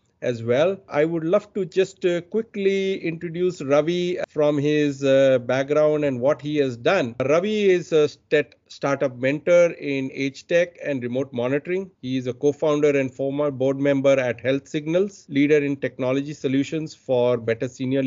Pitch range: 130-160 Hz